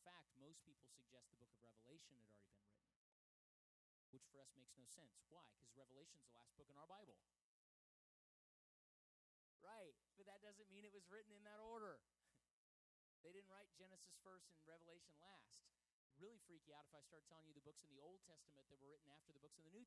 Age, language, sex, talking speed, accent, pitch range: 30-49, English, male, 210 wpm, American, 135-205 Hz